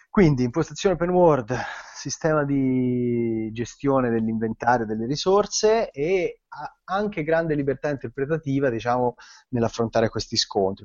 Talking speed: 105 wpm